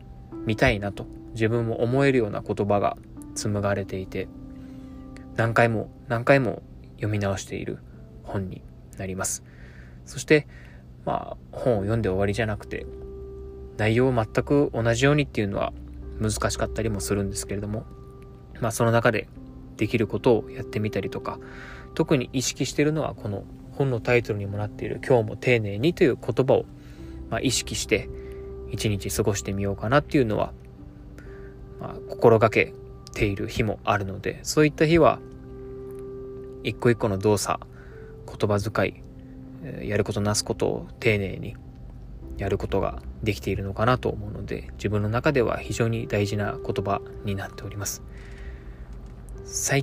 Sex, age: male, 20-39